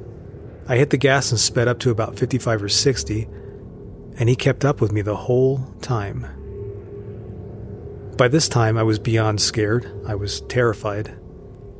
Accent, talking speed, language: American, 160 wpm, English